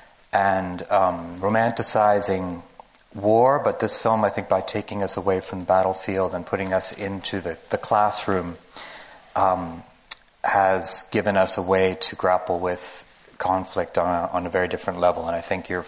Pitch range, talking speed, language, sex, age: 95-110 Hz, 165 wpm, English, male, 30-49